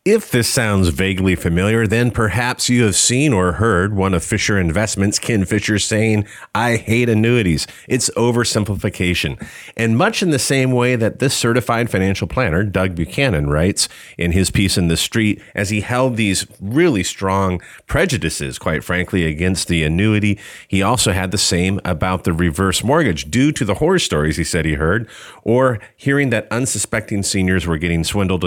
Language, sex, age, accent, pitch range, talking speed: English, male, 40-59, American, 85-110 Hz, 175 wpm